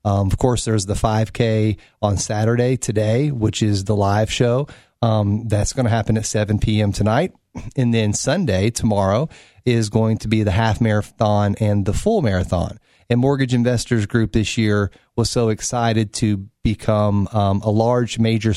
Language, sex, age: English, male, 30-49